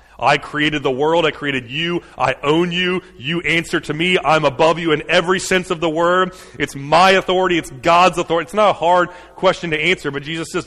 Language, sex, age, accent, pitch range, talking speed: English, male, 30-49, American, 130-180 Hz, 220 wpm